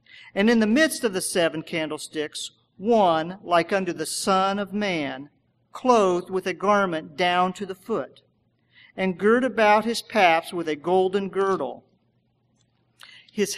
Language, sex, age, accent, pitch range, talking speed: English, male, 50-69, American, 165-210 Hz, 145 wpm